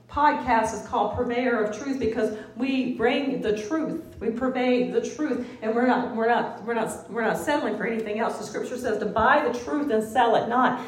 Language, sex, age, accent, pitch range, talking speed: English, female, 40-59, American, 220-270 Hz, 215 wpm